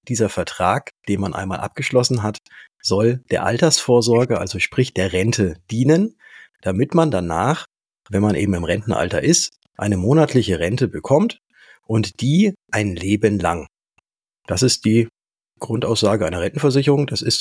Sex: male